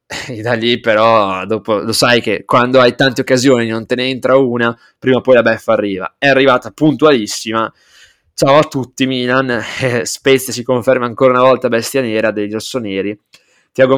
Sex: male